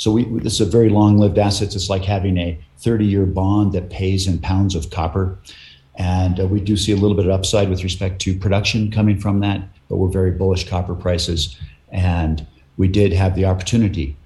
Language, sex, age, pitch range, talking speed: English, male, 50-69, 85-100 Hz, 200 wpm